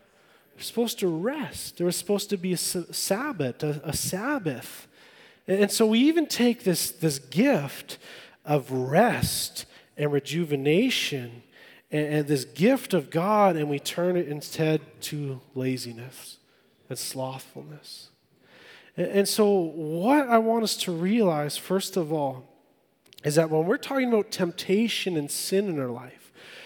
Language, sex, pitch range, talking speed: English, male, 150-215 Hz, 145 wpm